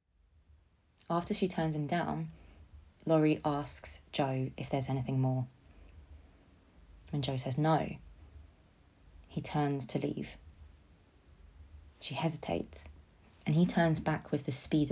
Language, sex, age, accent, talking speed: English, female, 20-39, British, 115 wpm